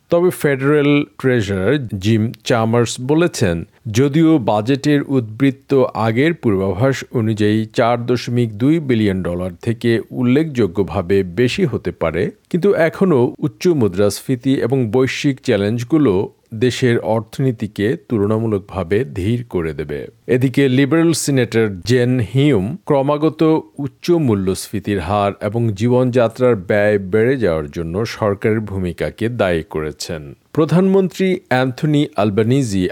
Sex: male